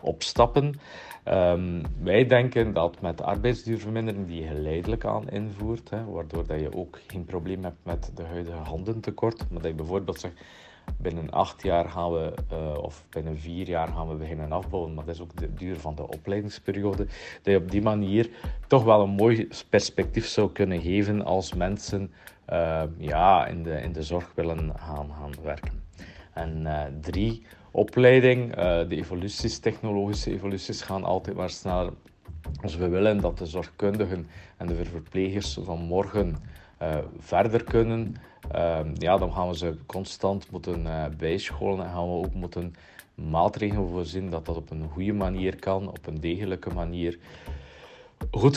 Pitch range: 80-100 Hz